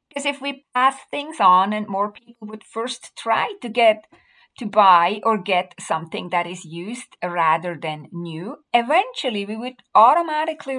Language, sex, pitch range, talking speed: English, female, 185-270 Hz, 160 wpm